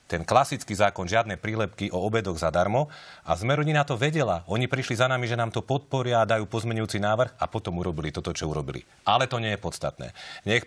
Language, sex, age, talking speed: Slovak, male, 40-59, 210 wpm